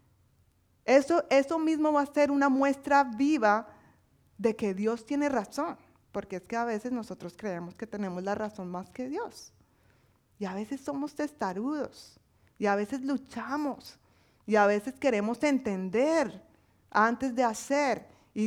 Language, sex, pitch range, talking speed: Spanish, female, 205-270 Hz, 150 wpm